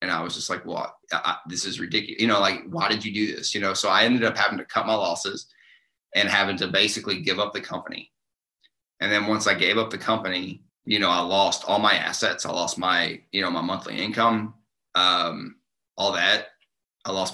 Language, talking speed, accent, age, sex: English, 220 wpm, American, 30-49, male